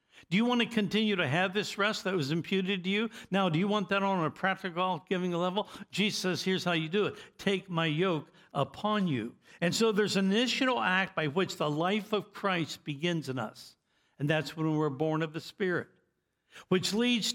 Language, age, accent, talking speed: English, 60-79, American, 210 wpm